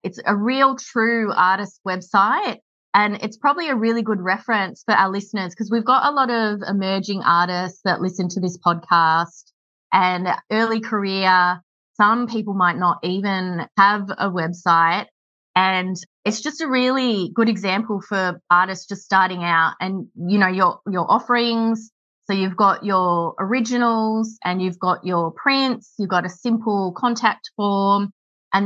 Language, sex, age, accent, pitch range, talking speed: English, female, 20-39, Australian, 180-220 Hz, 155 wpm